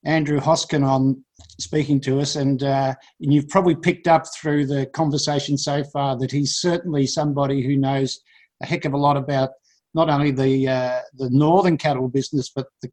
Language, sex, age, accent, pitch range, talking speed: English, male, 50-69, Australian, 140-170 Hz, 185 wpm